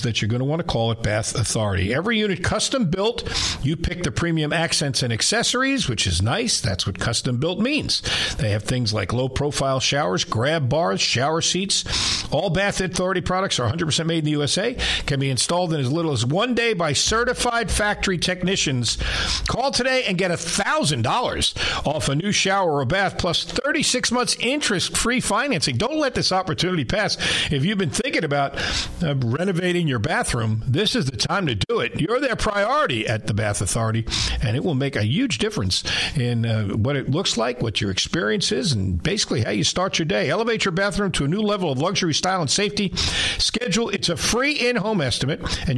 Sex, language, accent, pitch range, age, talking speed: male, English, American, 120-190 Hz, 50-69, 195 wpm